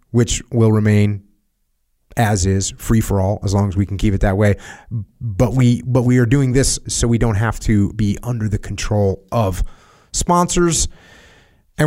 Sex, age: male, 30-49